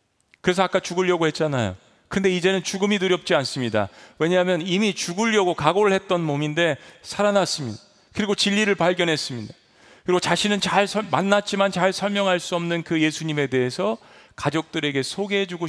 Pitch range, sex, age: 140-190 Hz, male, 40-59